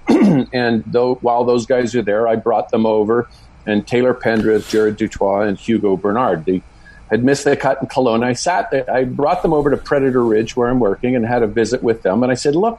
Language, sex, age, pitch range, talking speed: English, male, 50-69, 120-155 Hz, 230 wpm